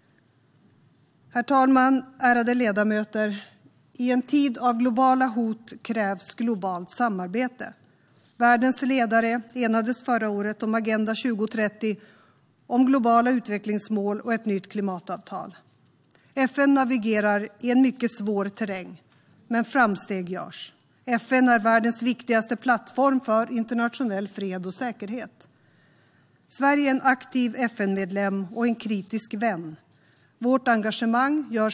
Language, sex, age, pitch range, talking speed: Swedish, female, 30-49, 210-250 Hz, 115 wpm